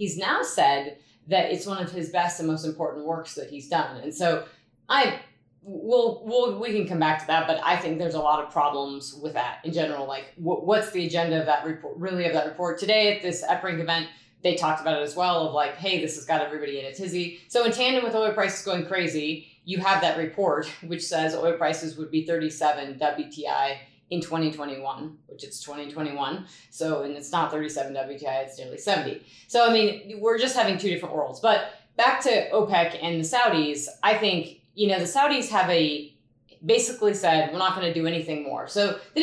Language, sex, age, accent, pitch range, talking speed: English, female, 30-49, American, 155-195 Hz, 210 wpm